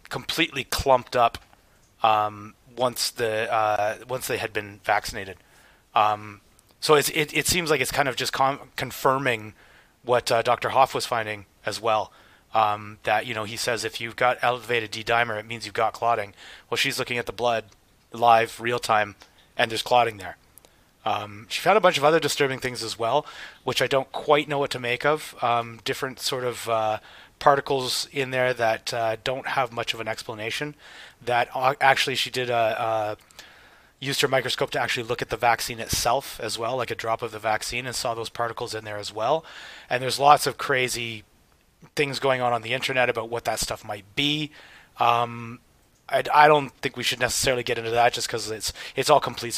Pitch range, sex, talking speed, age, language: 110-130 Hz, male, 195 wpm, 30-49, English